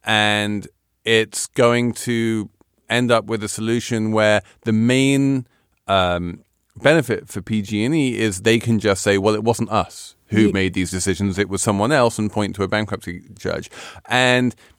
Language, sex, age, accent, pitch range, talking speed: English, male, 30-49, British, 95-120 Hz, 160 wpm